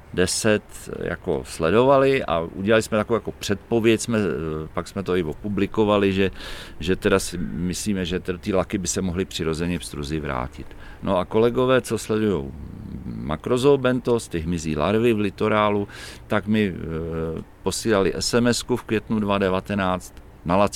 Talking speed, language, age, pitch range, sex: 140 wpm, Czech, 50-69, 85-105 Hz, male